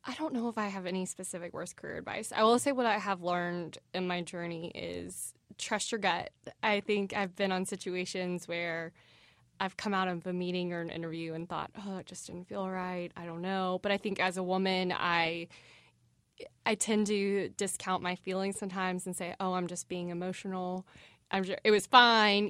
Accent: American